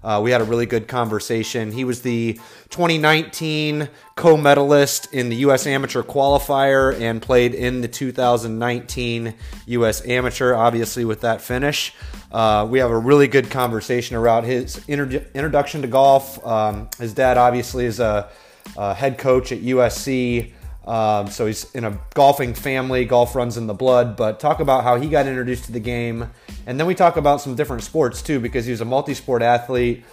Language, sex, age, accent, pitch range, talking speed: English, male, 30-49, American, 115-135 Hz, 180 wpm